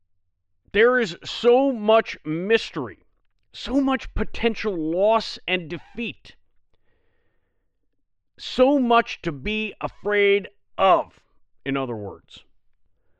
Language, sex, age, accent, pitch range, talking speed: English, male, 50-69, American, 145-220 Hz, 90 wpm